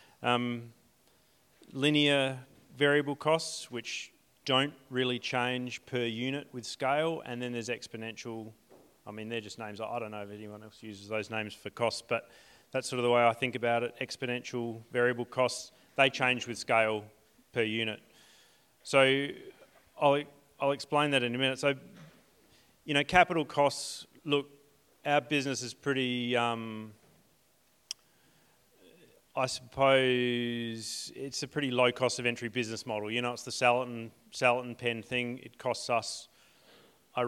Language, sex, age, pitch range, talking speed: English, male, 30-49, 115-135 Hz, 150 wpm